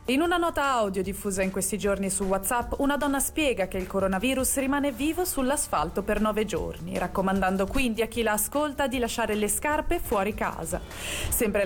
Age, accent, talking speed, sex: 20-39, native, 180 wpm, female